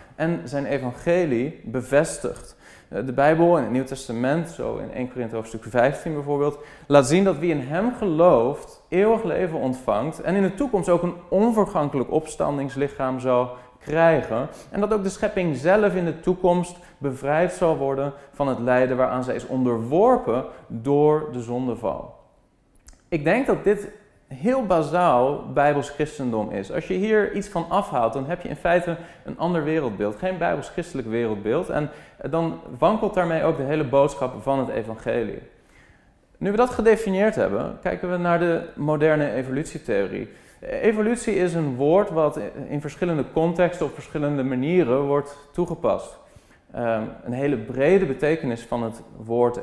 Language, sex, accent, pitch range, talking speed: Dutch, male, Dutch, 130-175 Hz, 150 wpm